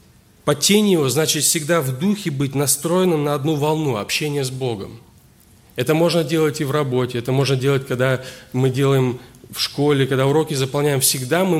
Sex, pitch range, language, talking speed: male, 125-155 Hz, Russian, 170 wpm